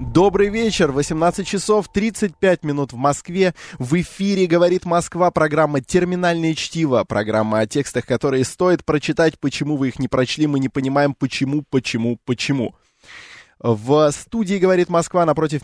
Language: Russian